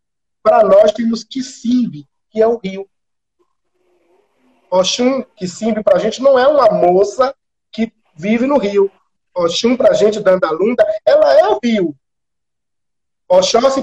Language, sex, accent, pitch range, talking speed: Portuguese, male, Brazilian, 195-290 Hz, 135 wpm